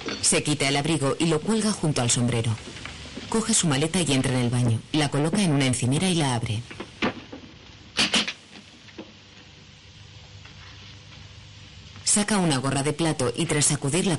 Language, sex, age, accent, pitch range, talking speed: Spanish, female, 30-49, Spanish, 105-155 Hz, 145 wpm